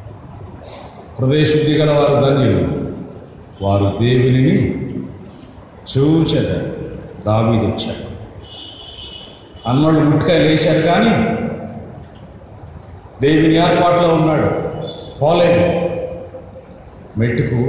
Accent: native